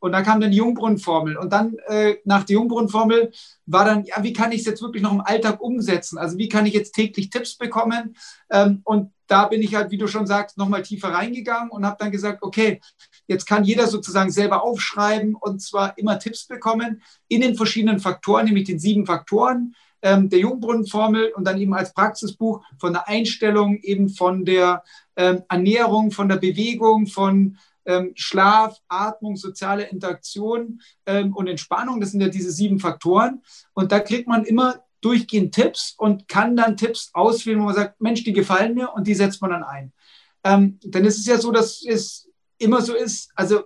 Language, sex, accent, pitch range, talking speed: German, male, German, 195-225 Hz, 195 wpm